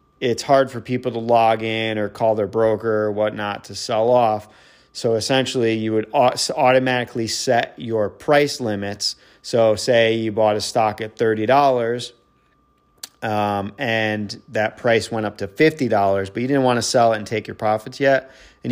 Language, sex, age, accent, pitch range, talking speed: English, male, 30-49, American, 110-130 Hz, 170 wpm